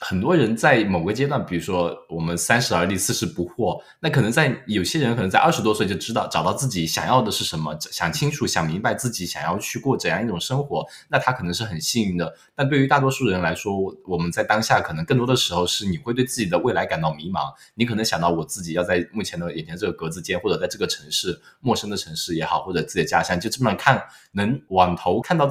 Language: Chinese